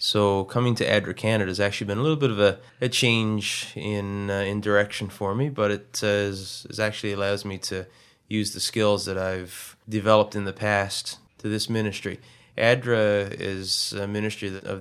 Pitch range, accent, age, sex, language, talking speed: 95-110 Hz, American, 20-39, male, English, 190 wpm